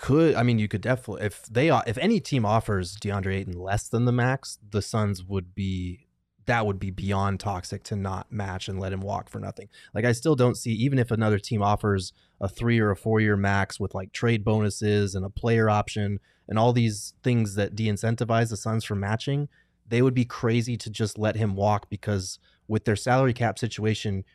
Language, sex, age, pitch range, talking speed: English, male, 20-39, 100-115 Hz, 215 wpm